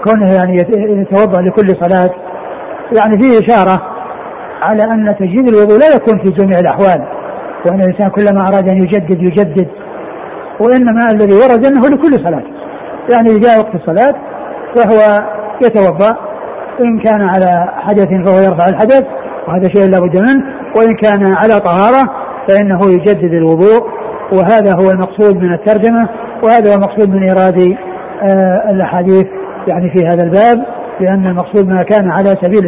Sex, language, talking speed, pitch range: male, Arabic, 140 wpm, 185-220 Hz